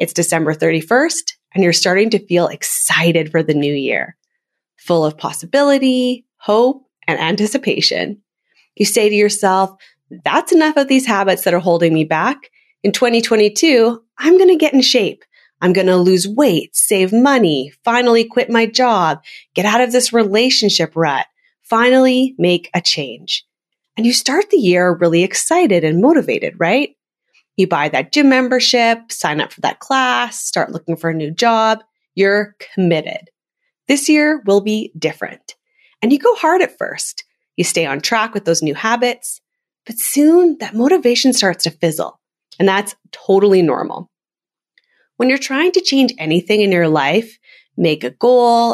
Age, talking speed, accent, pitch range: 30-49, 165 wpm, American, 175-260 Hz